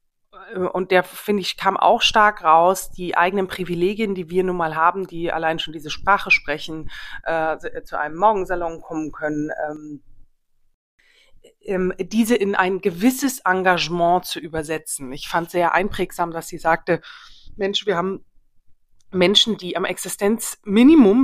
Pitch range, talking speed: 170-205 Hz, 140 wpm